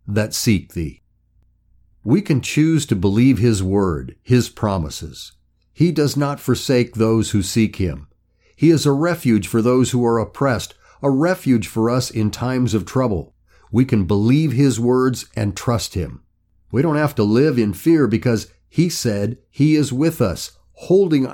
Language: English